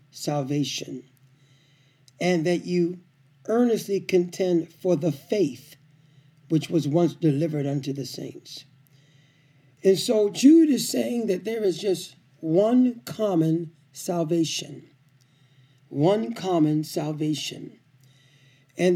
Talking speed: 100 wpm